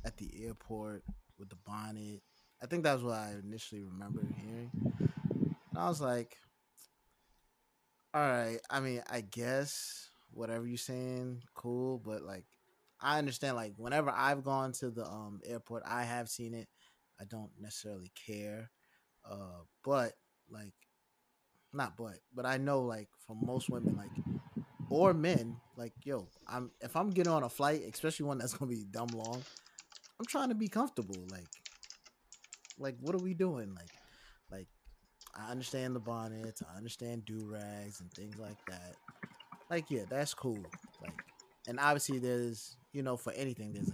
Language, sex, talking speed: English, male, 160 wpm